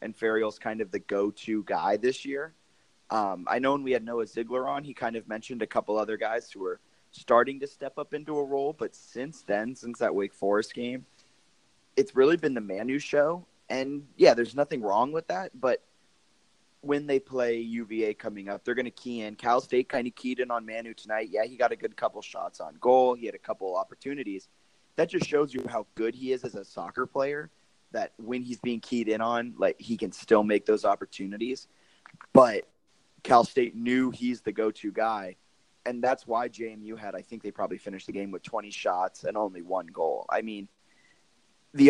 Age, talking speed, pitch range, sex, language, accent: 20-39, 210 wpm, 110-130 Hz, male, English, American